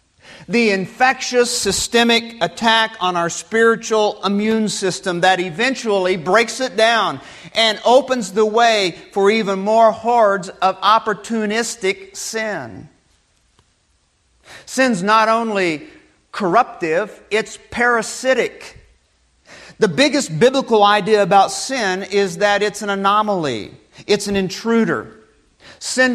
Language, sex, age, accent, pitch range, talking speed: English, male, 50-69, American, 185-230 Hz, 105 wpm